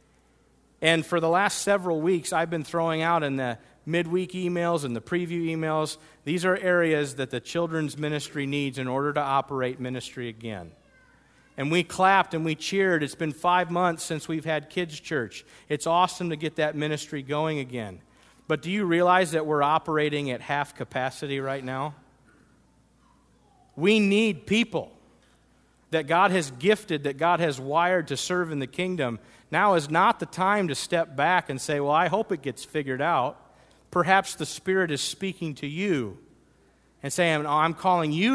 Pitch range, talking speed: 135-175 Hz, 175 wpm